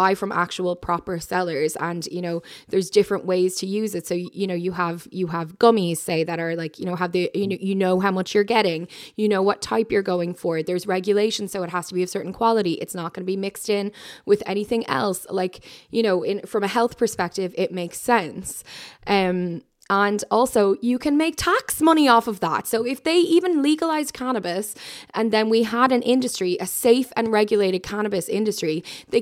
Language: English